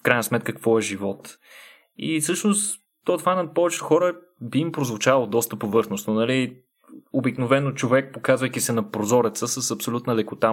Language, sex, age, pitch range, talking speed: Bulgarian, male, 20-39, 110-140 Hz, 155 wpm